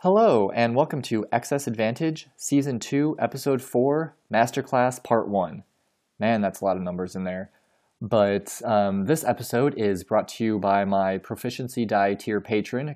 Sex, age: male, 20-39